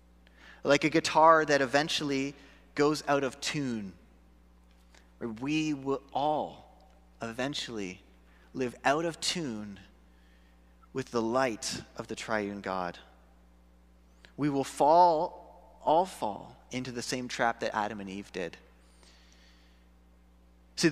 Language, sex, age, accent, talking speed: English, male, 30-49, American, 110 wpm